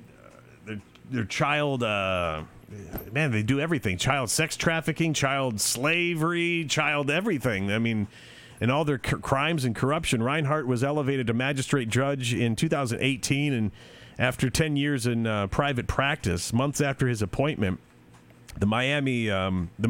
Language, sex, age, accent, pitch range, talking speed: English, male, 40-59, American, 110-145 Hz, 140 wpm